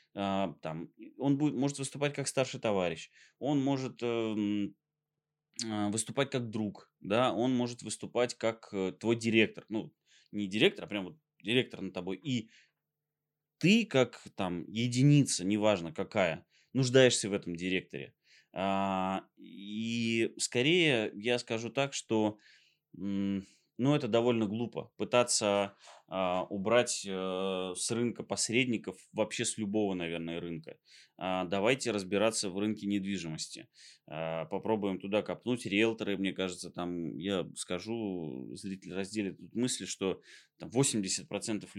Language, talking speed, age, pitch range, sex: Russian, 115 wpm, 20-39, 95-125 Hz, male